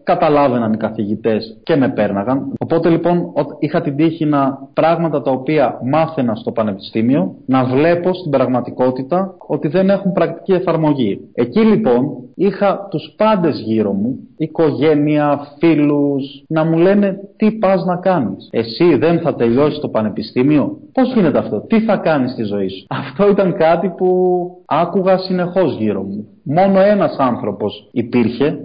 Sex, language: male, Greek